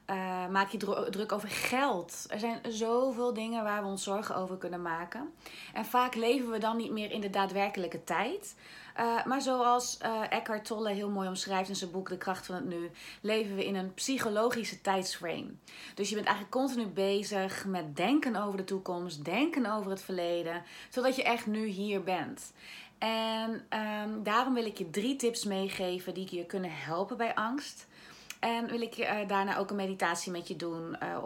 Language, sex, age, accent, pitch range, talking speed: Dutch, female, 30-49, Dutch, 185-230 Hz, 185 wpm